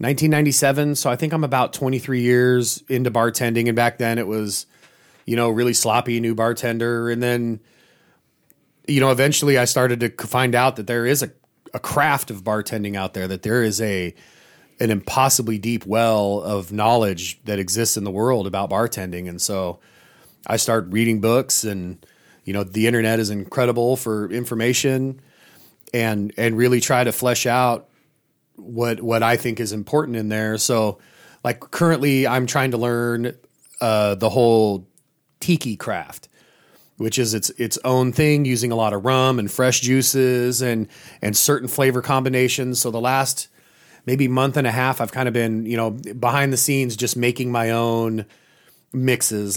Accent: American